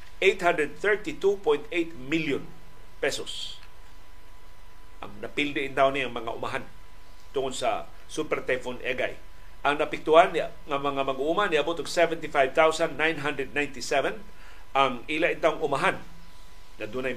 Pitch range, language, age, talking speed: 130-175 Hz, Filipino, 50-69, 105 wpm